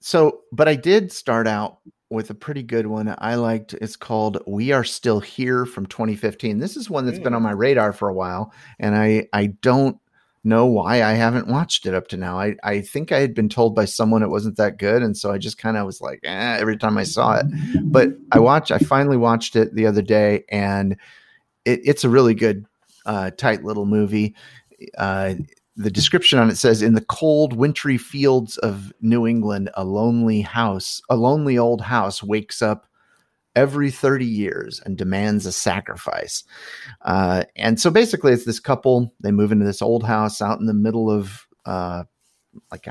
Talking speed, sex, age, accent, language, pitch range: 200 wpm, male, 30-49, American, English, 100-120 Hz